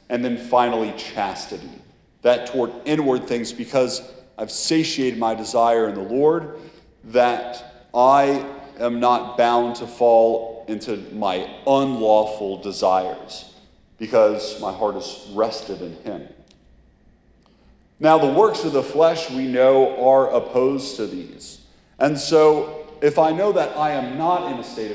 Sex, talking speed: male, 140 wpm